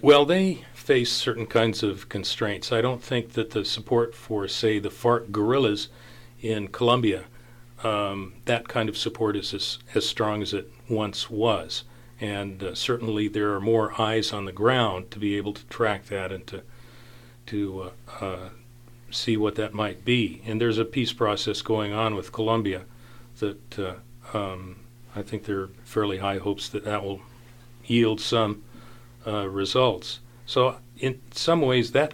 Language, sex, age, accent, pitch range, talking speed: English, male, 40-59, American, 105-120 Hz, 170 wpm